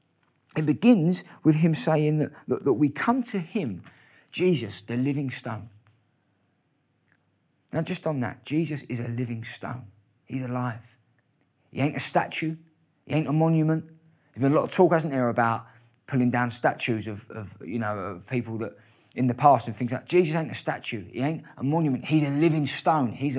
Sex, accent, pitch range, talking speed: male, British, 125-165 Hz, 190 wpm